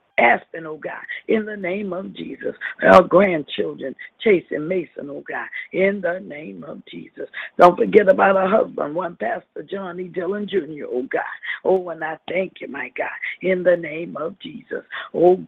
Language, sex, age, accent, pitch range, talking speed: English, female, 50-69, American, 180-255 Hz, 175 wpm